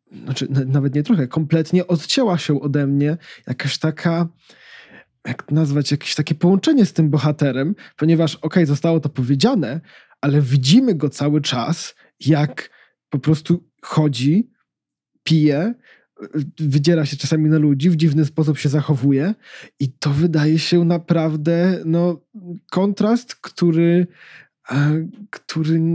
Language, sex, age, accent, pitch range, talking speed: Polish, male, 20-39, native, 140-170 Hz, 125 wpm